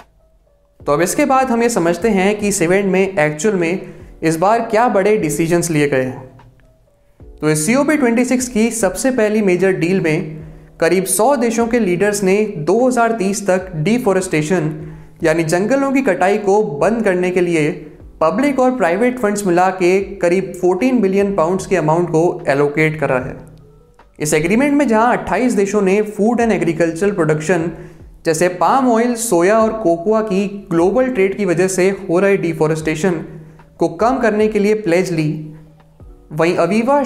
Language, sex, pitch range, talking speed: Hindi, male, 160-210 Hz, 160 wpm